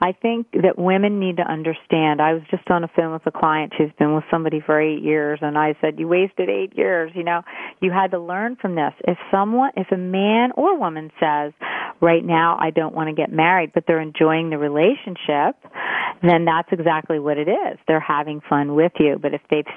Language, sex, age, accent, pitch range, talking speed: English, female, 40-59, American, 160-195 Hz, 220 wpm